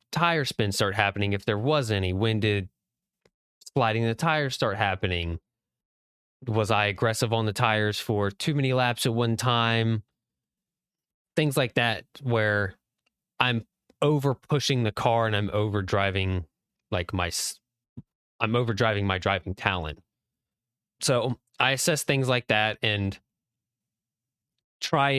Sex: male